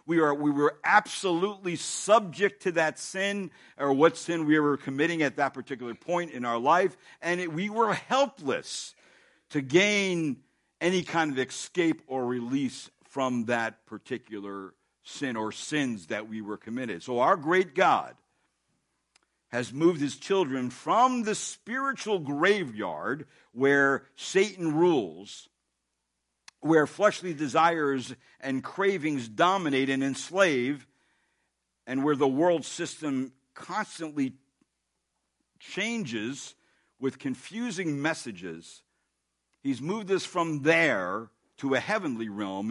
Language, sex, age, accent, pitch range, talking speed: English, male, 60-79, American, 130-180 Hz, 120 wpm